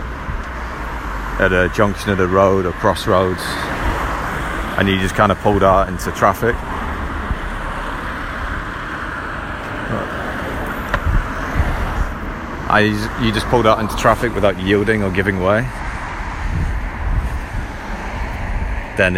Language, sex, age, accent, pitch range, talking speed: English, male, 40-59, British, 75-95 Hz, 90 wpm